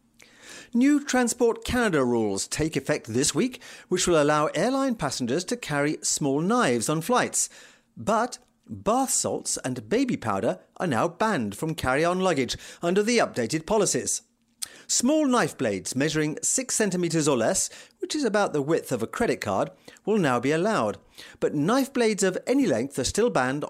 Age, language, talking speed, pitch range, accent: 40-59, English, 165 wpm, 140-225 Hz, British